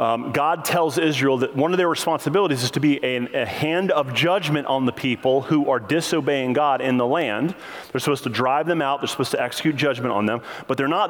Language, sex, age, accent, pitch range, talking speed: English, male, 30-49, American, 140-185 Hz, 230 wpm